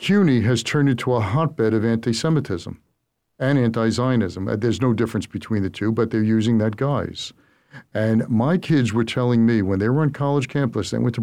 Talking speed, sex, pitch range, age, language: 190 wpm, male, 115-140 Hz, 50-69, English